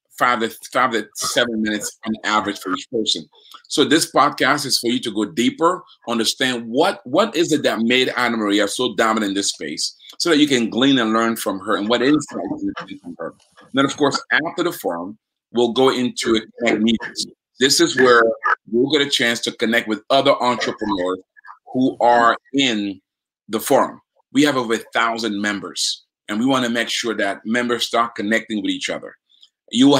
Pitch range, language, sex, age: 115-140 Hz, English, male, 40-59